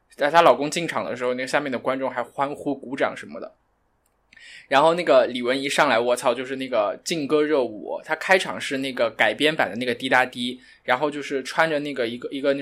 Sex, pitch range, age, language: male, 130-170 Hz, 20-39, Chinese